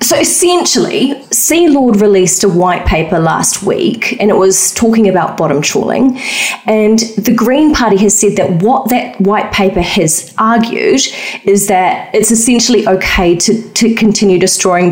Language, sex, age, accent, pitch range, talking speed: English, female, 30-49, Australian, 190-235 Hz, 155 wpm